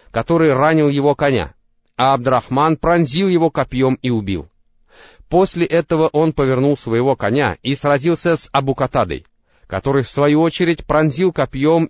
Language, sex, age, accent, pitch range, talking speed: Russian, male, 30-49, native, 115-155 Hz, 135 wpm